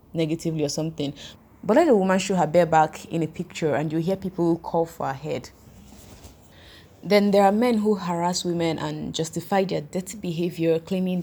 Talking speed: 185 wpm